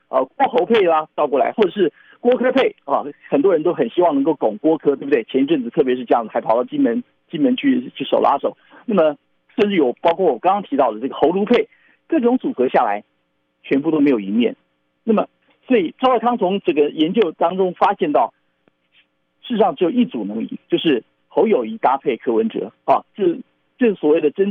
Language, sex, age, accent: Chinese, male, 50-69, native